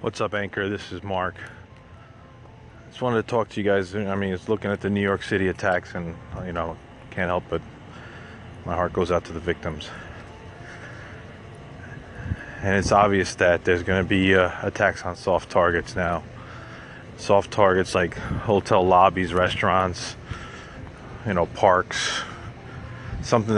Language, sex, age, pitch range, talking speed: English, male, 20-39, 90-110 Hz, 155 wpm